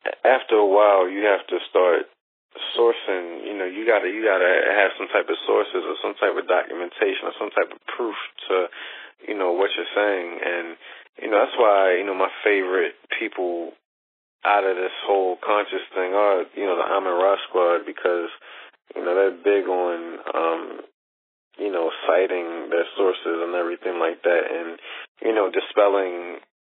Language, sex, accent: English, male, American